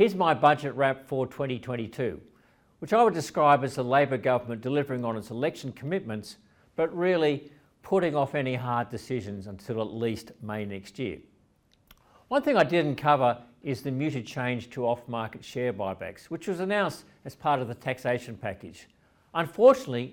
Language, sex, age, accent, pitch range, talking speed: English, male, 60-79, Australian, 115-155 Hz, 165 wpm